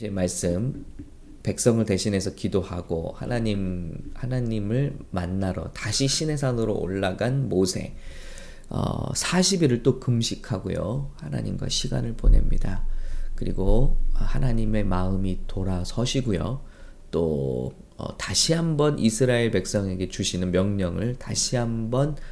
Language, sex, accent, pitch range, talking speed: English, male, Korean, 95-130 Hz, 90 wpm